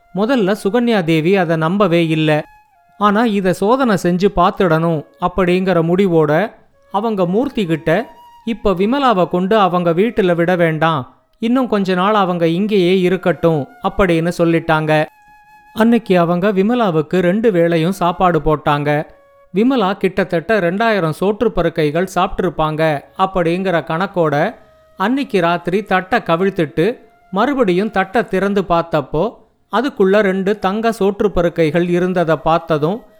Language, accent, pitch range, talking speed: Tamil, native, 165-215 Hz, 105 wpm